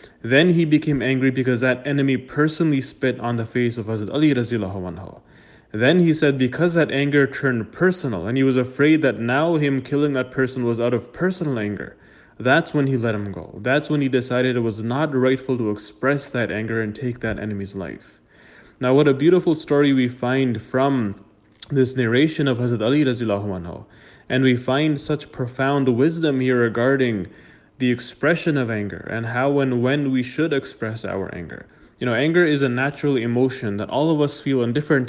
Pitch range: 115-145 Hz